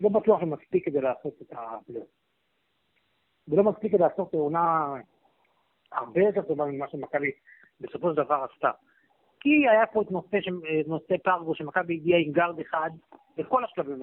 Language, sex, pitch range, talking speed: Hebrew, male, 160-220 Hz, 155 wpm